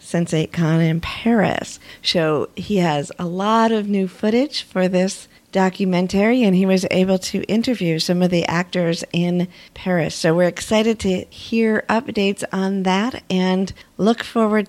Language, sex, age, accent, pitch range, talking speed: English, female, 50-69, American, 175-220 Hz, 155 wpm